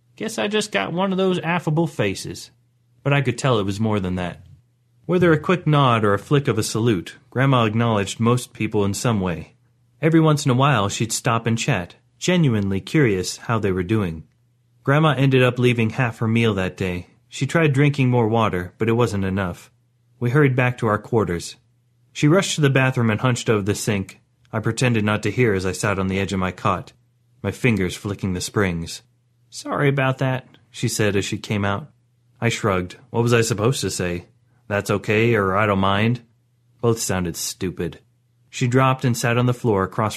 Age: 30-49